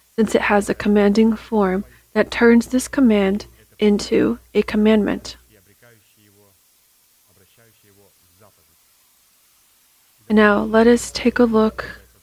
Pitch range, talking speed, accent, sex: 190-225 Hz, 95 wpm, American, female